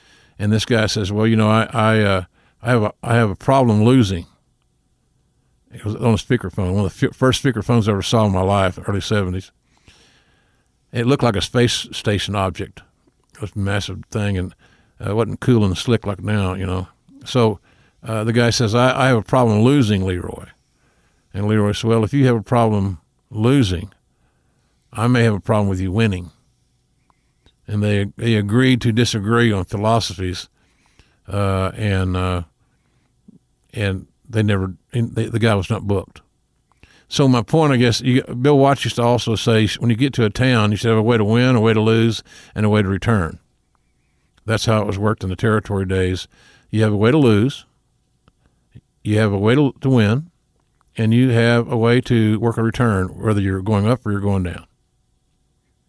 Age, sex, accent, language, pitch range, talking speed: 50-69, male, American, English, 100-120 Hz, 200 wpm